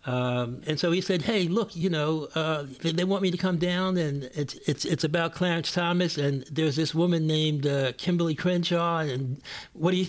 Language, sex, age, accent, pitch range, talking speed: English, male, 60-79, American, 140-175 Hz, 215 wpm